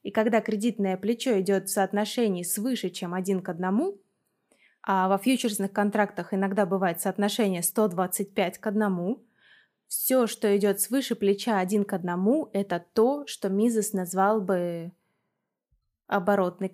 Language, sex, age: Russian, female, 20-39